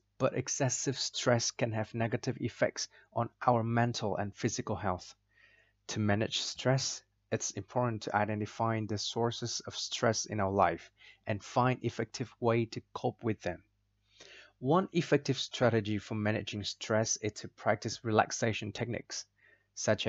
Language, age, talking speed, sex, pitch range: Vietnamese, 20-39, 140 wpm, male, 105-125 Hz